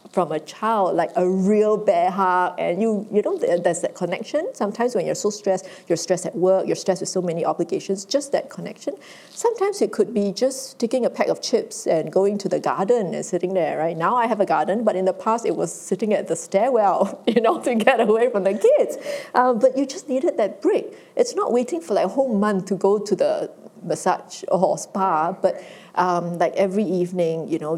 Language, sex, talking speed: English, female, 225 wpm